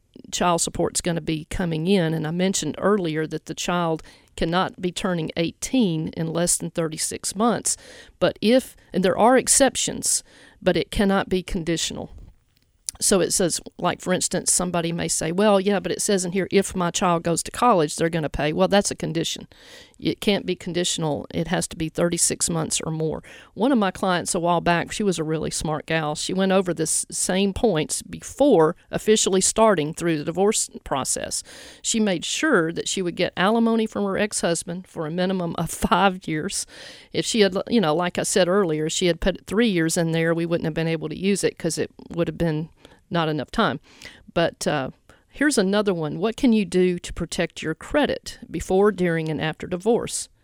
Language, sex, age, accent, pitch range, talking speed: English, female, 50-69, American, 165-200 Hz, 200 wpm